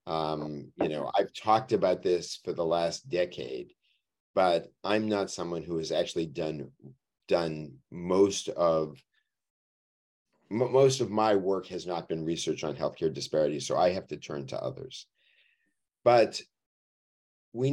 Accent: American